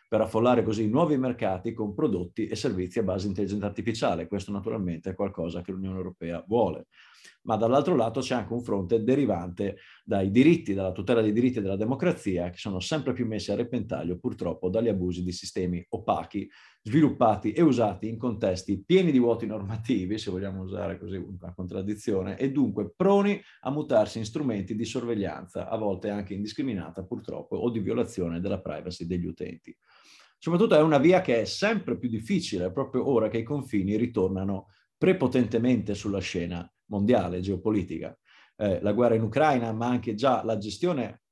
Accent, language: native, Italian